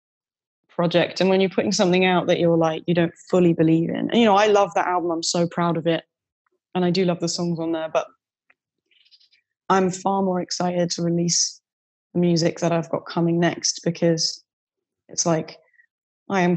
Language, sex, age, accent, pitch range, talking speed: English, female, 20-39, British, 165-185 Hz, 195 wpm